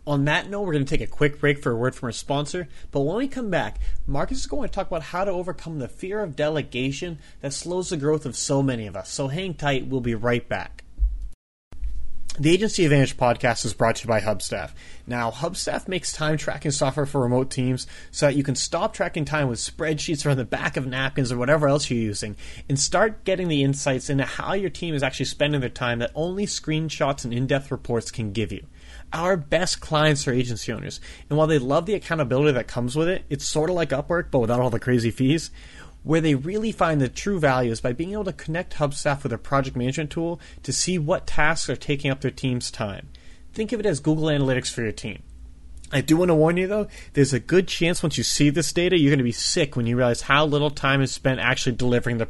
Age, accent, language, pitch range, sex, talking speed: 30-49, American, English, 120-160 Hz, male, 240 wpm